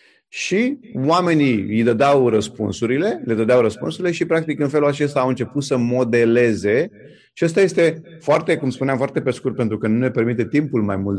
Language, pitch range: Romanian, 115-150 Hz